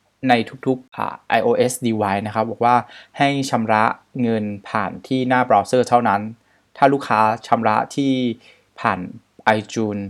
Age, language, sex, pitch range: 20-39, Thai, male, 105-130 Hz